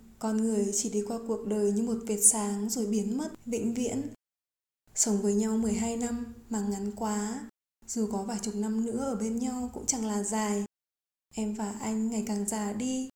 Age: 20-39